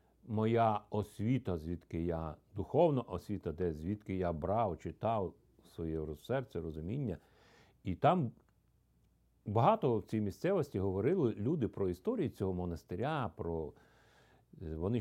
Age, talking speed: 50-69, 110 wpm